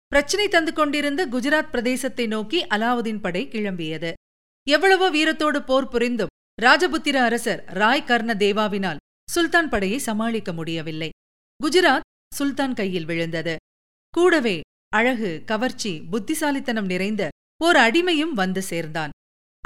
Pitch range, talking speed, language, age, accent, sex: 200-300 Hz, 100 wpm, Tamil, 40-59, native, female